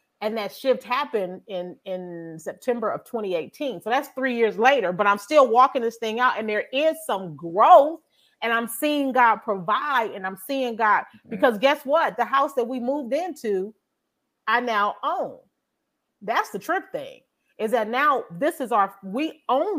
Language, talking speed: English, 180 wpm